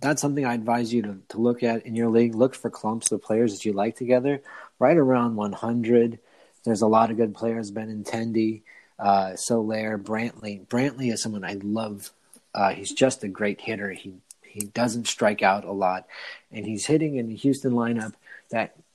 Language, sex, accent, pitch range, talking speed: English, male, American, 105-120 Hz, 195 wpm